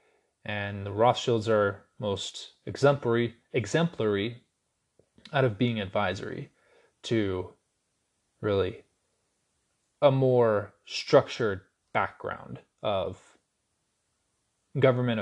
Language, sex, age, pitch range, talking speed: English, male, 20-39, 110-140 Hz, 75 wpm